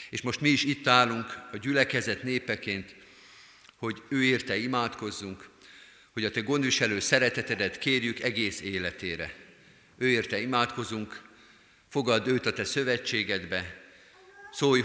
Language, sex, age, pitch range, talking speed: Hungarian, male, 50-69, 100-125 Hz, 120 wpm